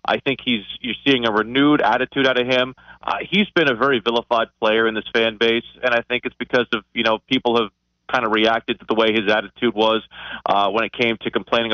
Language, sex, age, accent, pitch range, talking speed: English, male, 30-49, American, 115-130 Hz, 240 wpm